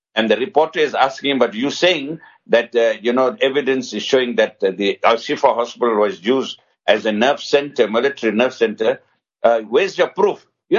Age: 60-79